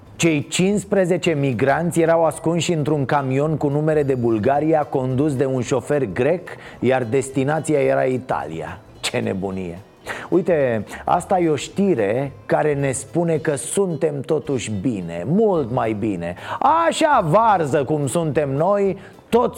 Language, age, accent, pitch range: Romanian, 30-49, native, 135-170 Hz